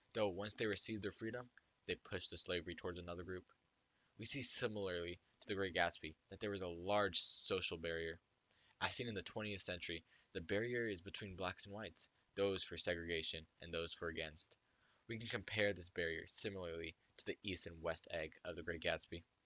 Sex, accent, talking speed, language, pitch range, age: male, American, 195 wpm, English, 85-105 Hz, 20-39